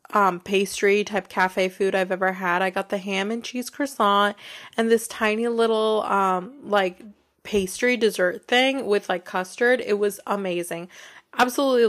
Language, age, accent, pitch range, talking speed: English, 20-39, American, 195-235 Hz, 155 wpm